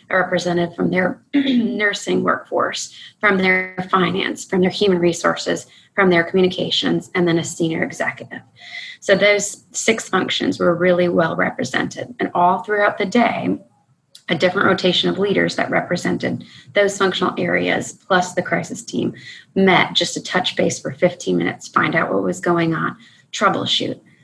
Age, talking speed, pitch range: 30-49, 155 wpm, 170-195 Hz